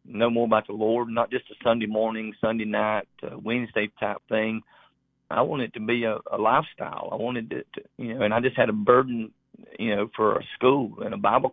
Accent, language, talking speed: American, English, 230 wpm